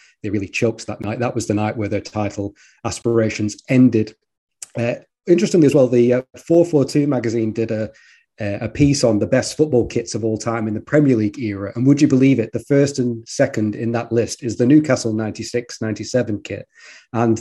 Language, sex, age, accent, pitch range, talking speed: English, male, 30-49, British, 115-140 Hz, 195 wpm